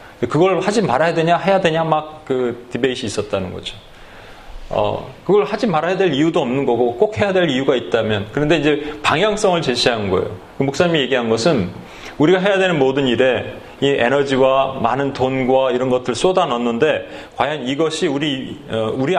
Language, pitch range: Korean, 125-170 Hz